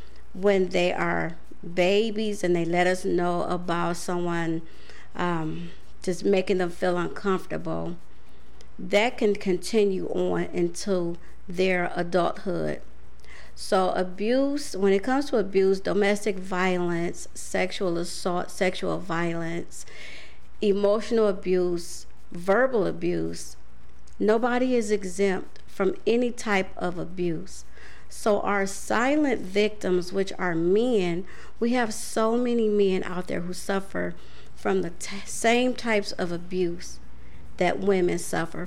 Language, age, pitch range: English, 50-69, 170-200 Hz